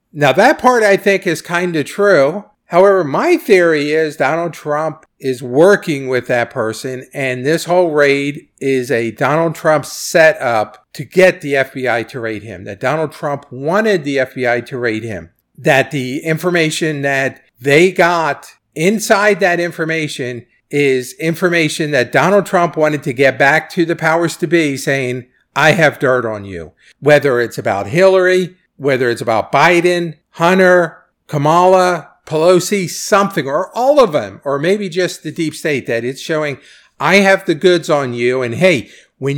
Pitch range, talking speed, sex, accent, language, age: 135-175 Hz, 165 wpm, male, American, English, 50-69